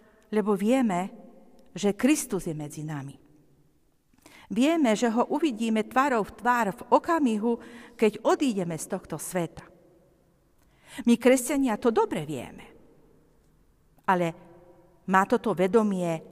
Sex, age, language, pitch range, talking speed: female, 50-69, Slovak, 180-260 Hz, 110 wpm